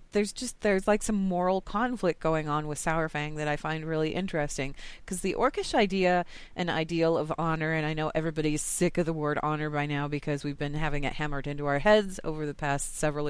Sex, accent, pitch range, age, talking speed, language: female, American, 150-180 Hz, 30-49, 215 wpm, English